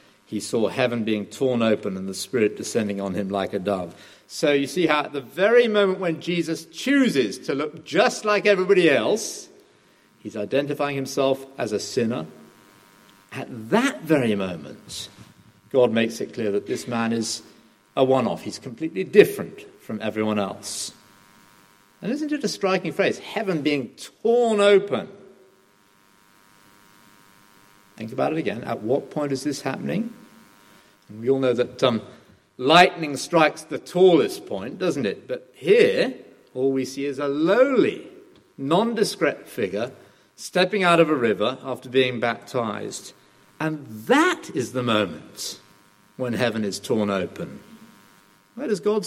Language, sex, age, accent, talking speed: English, male, 50-69, British, 150 wpm